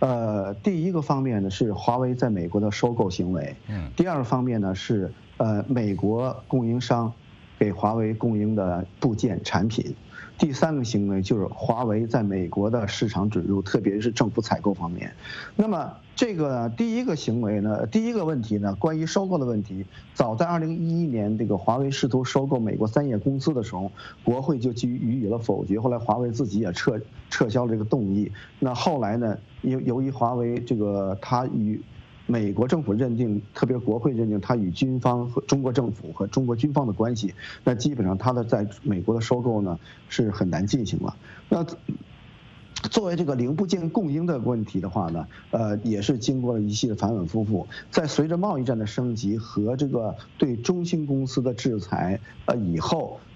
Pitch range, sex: 105-135 Hz, male